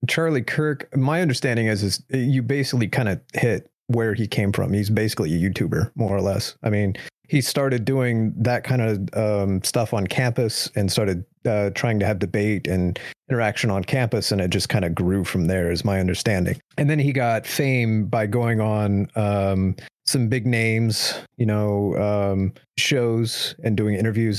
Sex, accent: male, American